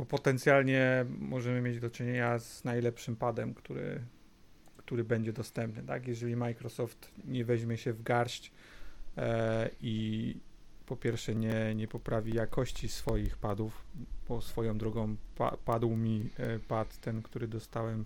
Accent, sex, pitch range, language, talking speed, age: native, male, 110-130 Hz, Polish, 140 wpm, 30-49